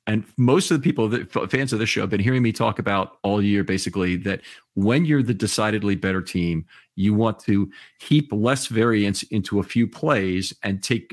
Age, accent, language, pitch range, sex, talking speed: 40-59, American, English, 105-140 Hz, male, 210 wpm